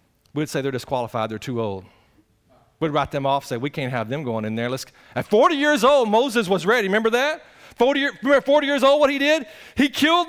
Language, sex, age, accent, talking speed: English, male, 40-59, American, 240 wpm